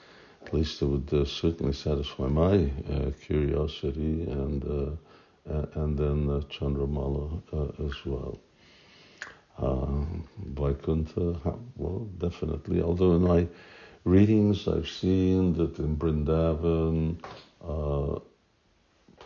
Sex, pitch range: male, 70-80 Hz